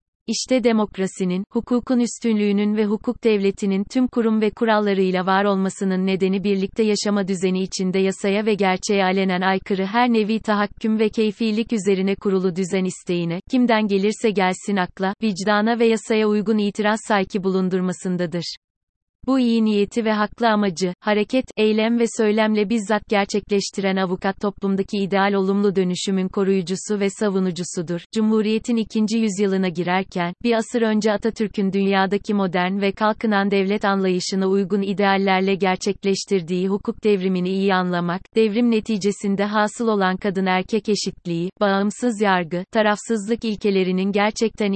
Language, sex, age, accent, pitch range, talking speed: Turkish, female, 30-49, native, 190-220 Hz, 130 wpm